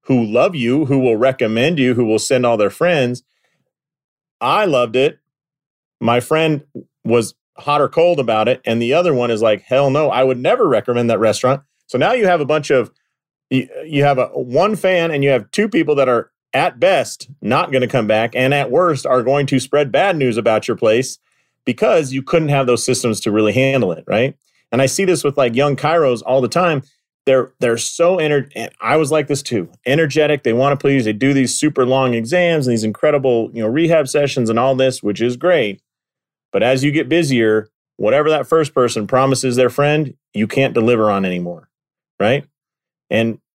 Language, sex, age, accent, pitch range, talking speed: English, male, 30-49, American, 120-150 Hz, 205 wpm